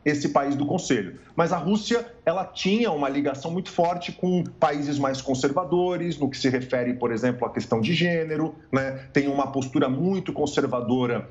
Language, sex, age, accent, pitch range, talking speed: Portuguese, male, 40-59, Brazilian, 130-185 Hz, 175 wpm